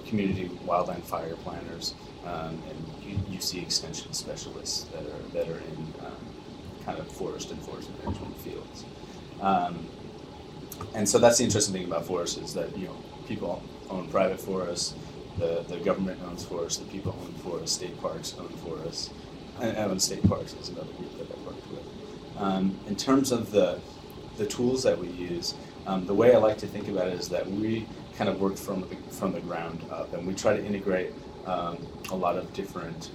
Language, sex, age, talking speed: English, male, 30-49, 190 wpm